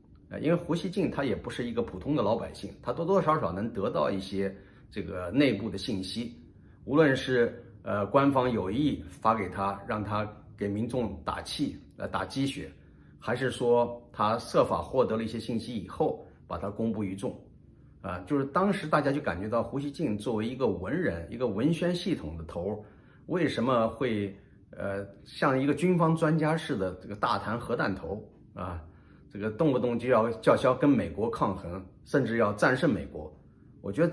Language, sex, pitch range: Chinese, male, 95-130 Hz